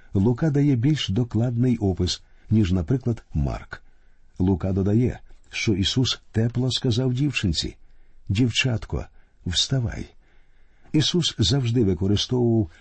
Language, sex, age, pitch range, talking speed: Ukrainian, male, 50-69, 95-125 Hz, 95 wpm